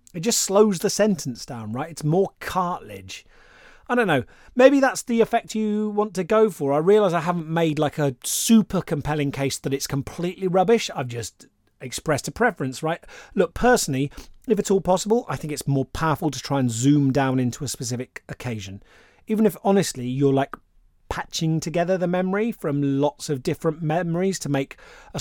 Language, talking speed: English, 190 wpm